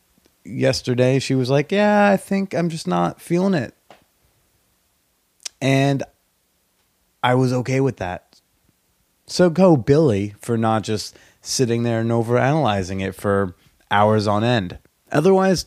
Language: English